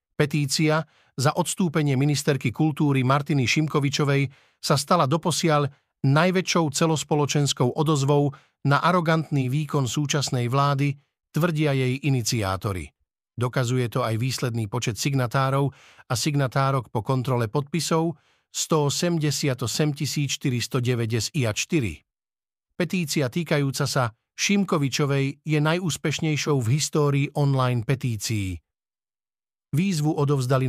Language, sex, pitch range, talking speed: Slovak, male, 125-150 Hz, 90 wpm